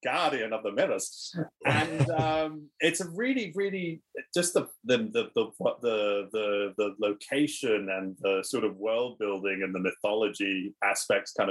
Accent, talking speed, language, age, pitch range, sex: British, 150 wpm, English, 20-39, 100-125 Hz, male